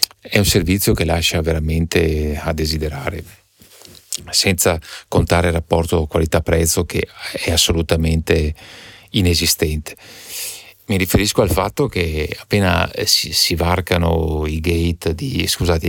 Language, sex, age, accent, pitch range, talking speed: Italian, male, 50-69, native, 80-100 Hz, 115 wpm